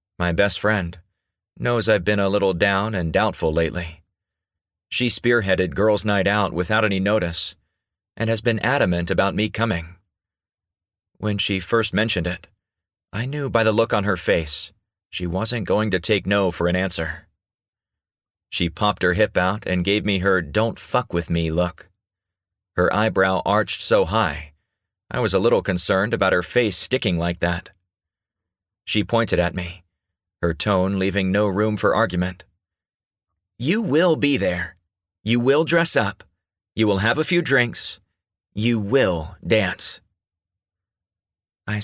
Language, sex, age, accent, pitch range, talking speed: English, male, 40-59, American, 90-105 Hz, 155 wpm